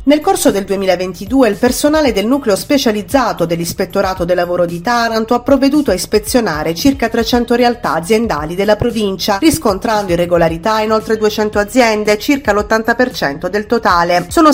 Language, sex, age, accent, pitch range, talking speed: Italian, female, 30-49, native, 190-245 Hz, 145 wpm